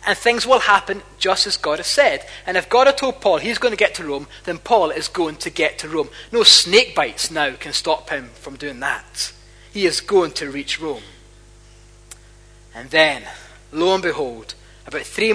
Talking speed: 205 wpm